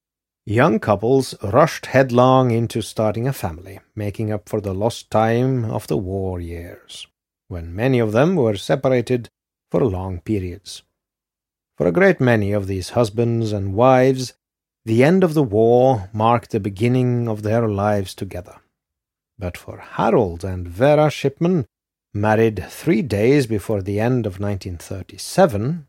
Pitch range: 95-130 Hz